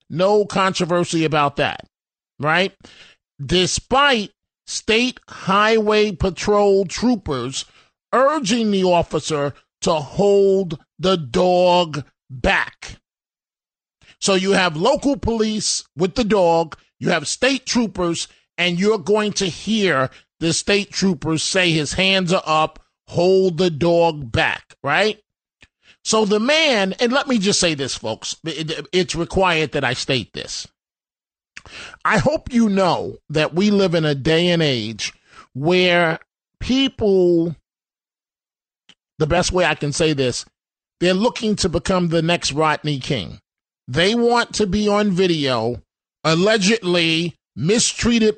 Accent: American